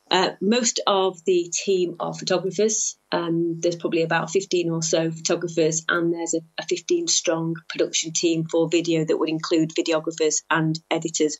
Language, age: English, 30-49